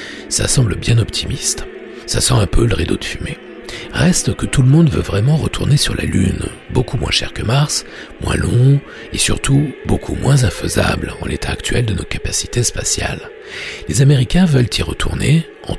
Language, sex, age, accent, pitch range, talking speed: French, male, 60-79, French, 95-145 Hz, 180 wpm